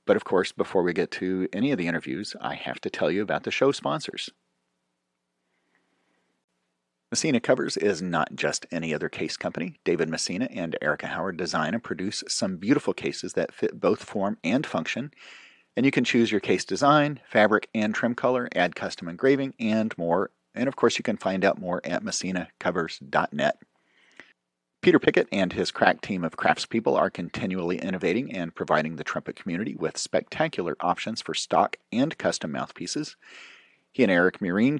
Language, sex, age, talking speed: English, male, 40-59, 170 wpm